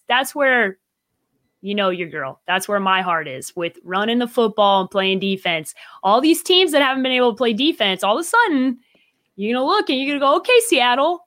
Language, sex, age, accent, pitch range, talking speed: English, female, 30-49, American, 180-255 Hz, 230 wpm